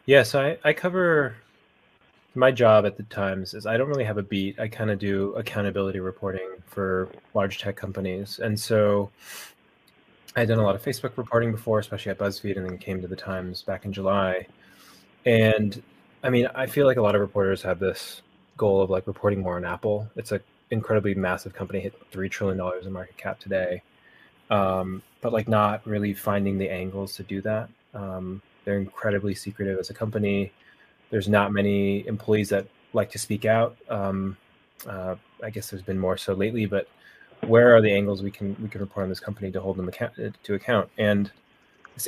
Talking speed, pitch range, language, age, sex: 200 wpm, 95-110 Hz, English, 20-39, male